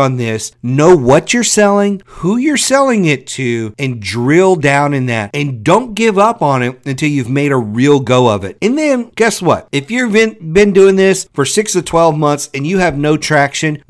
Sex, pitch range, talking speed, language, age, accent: male, 125-175 Hz, 210 wpm, English, 50-69, American